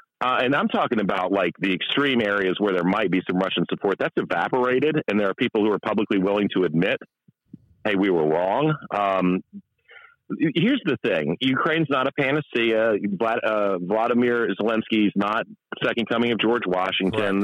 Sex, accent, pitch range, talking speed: male, American, 100-130 Hz, 170 wpm